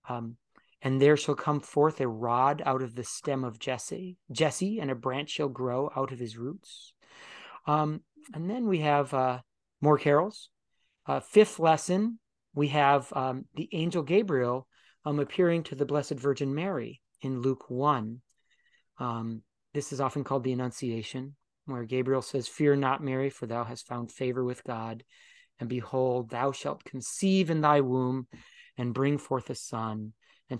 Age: 30-49